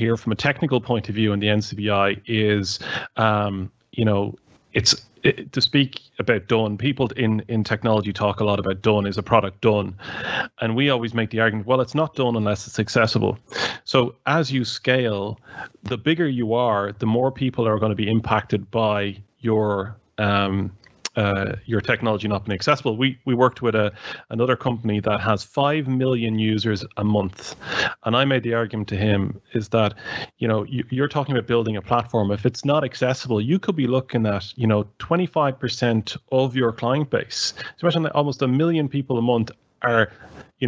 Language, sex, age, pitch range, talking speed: English, male, 30-49, 105-130 Hz, 190 wpm